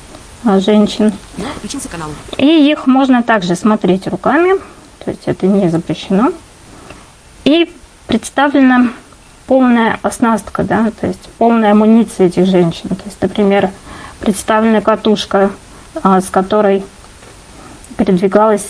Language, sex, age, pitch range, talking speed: Russian, female, 20-39, 195-245 Hz, 100 wpm